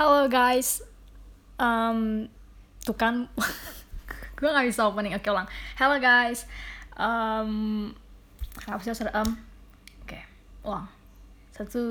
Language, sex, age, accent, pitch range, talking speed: Indonesian, female, 20-39, native, 200-235 Hz, 105 wpm